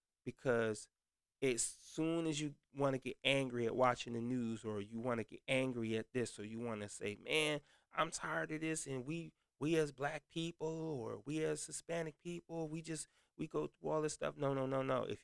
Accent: American